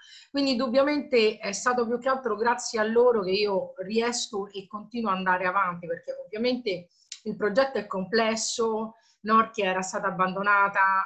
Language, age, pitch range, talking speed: Italian, 30-49, 185-225 Hz, 150 wpm